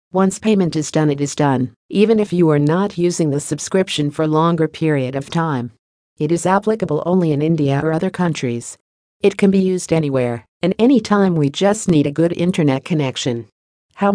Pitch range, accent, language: 145-180 Hz, American, English